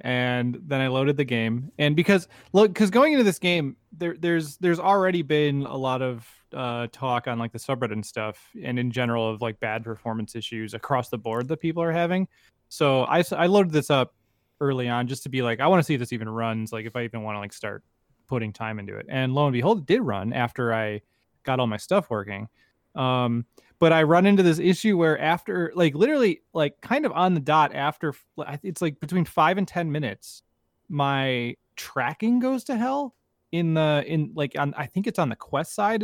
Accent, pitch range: American, 115-170 Hz